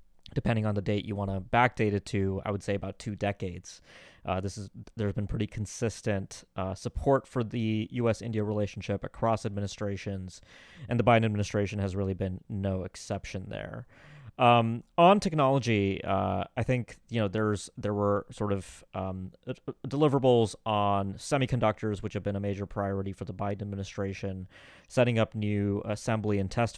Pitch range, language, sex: 95-110 Hz, English, male